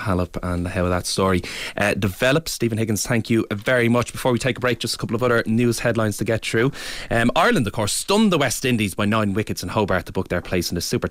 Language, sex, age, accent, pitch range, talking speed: English, male, 20-39, Irish, 90-120 Hz, 260 wpm